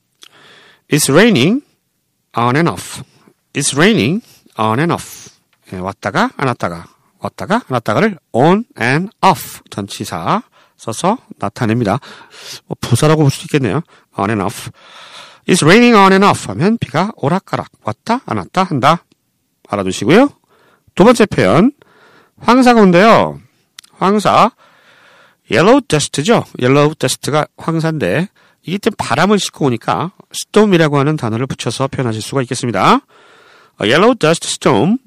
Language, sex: Korean, male